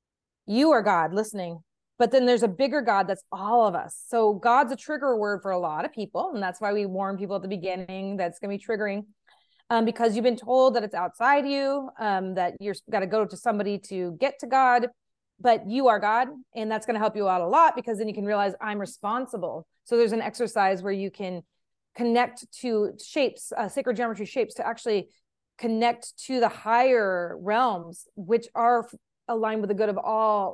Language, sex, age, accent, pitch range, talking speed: English, female, 20-39, American, 195-245 Hz, 210 wpm